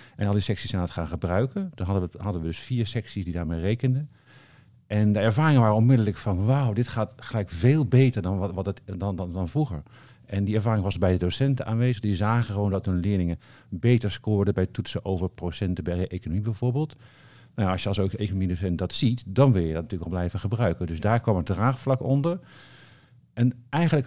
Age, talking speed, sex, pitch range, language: 50-69, 210 wpm, male, 95-125 Hz, Dutch